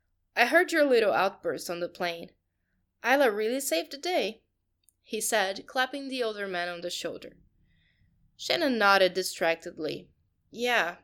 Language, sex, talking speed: English, female, 140 wpm